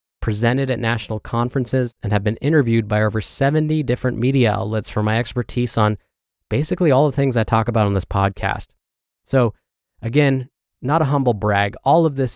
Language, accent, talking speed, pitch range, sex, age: English, American, 180 wpm, 105-130 Hz, male, 20-39